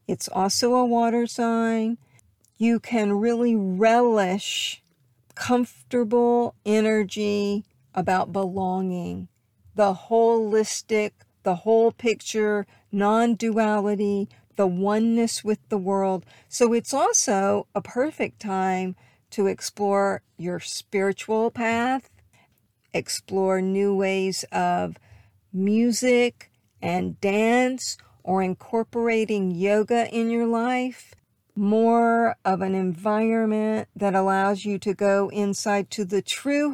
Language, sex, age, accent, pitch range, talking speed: English, female, 50-69, American, 190-230 Hz, 100 wpm